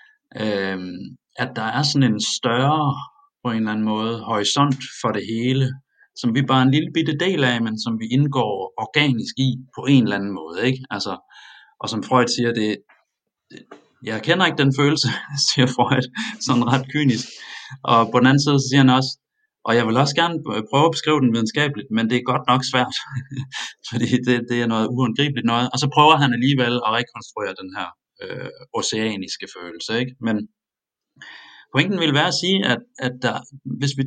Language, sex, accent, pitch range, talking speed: Danish, male, native, 115-145 Hz, 190 wpm